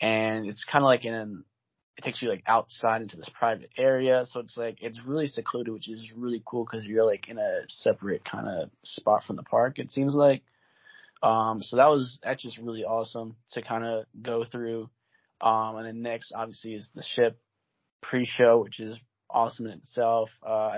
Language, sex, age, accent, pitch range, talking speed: English, male, 20-39, American, 110-125 Hz, 200 wpm